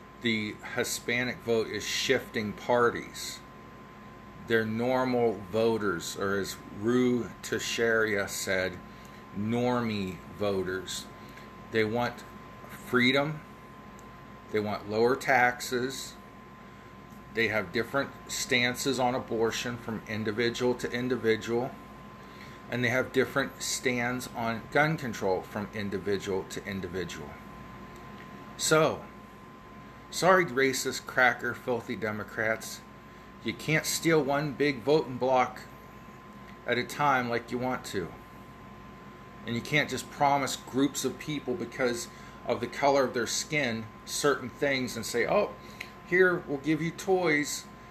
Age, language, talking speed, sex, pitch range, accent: 40-59, English, 115 wpm, male, 115-140 Hz, American